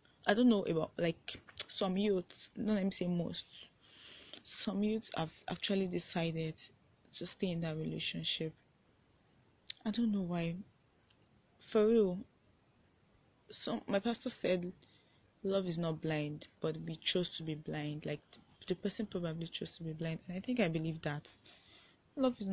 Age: 20-39